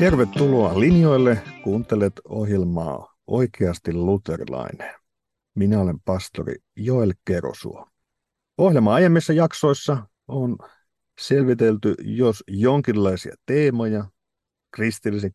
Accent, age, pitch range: native, 50-69, 95-115 Hz